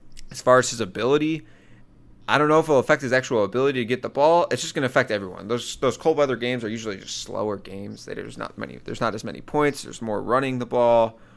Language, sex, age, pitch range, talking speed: English, male, 20-39, 105-125 Hz, 255 wpm